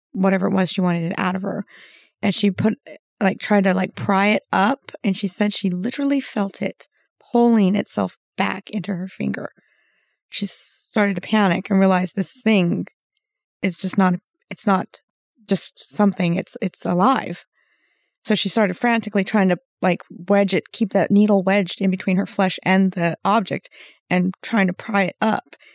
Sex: female